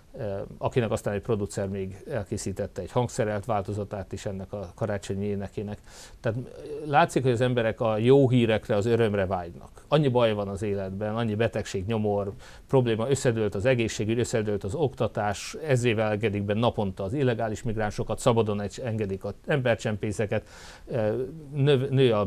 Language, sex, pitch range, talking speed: Hungarian, male, 105-120 Hz, 145 wpm